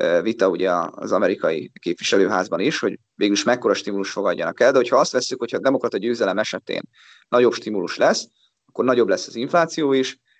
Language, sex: Hungarian, male